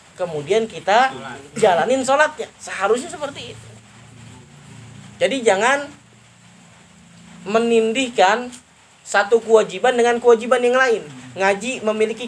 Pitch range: 200-235 Hz